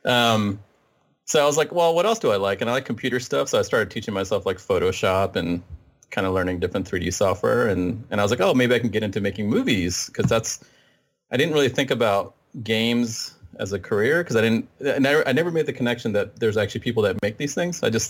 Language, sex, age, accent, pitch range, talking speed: English, male, 30-49, American, 95-120 Hz, 245 wpm